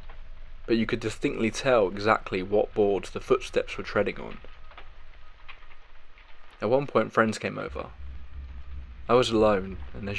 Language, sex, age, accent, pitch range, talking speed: English, male, 20-39, British, 80-105 Hz, 140 wpm